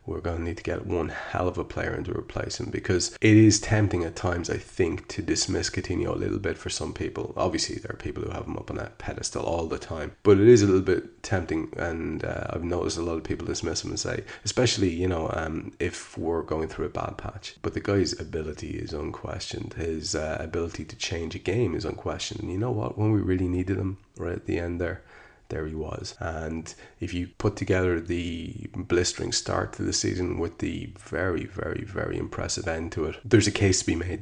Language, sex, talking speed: English, male, 235 wpm